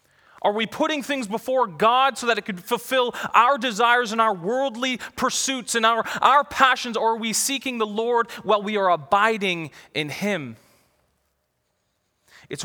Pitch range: 145-200 Hz